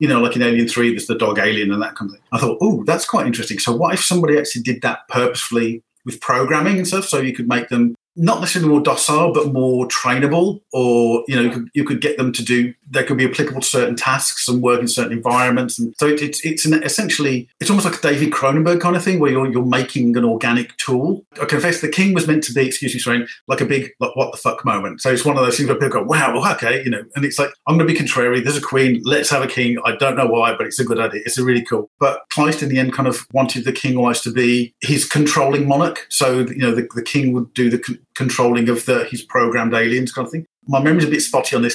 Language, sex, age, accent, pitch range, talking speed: English, male, 40-59, British, 120-145 Hz, 280 wpm